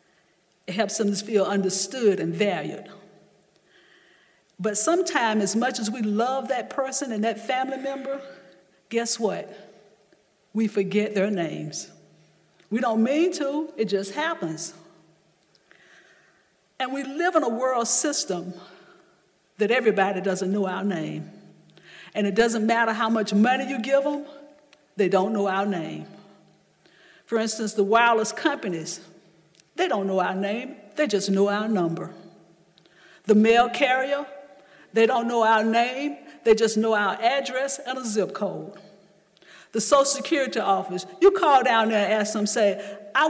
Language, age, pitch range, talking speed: English, 50-69, 190-260 Hz, 150 wpm